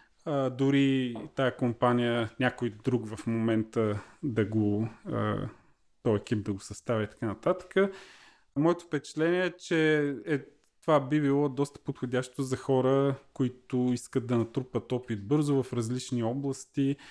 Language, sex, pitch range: Bulgarian, male, 115-140 Hz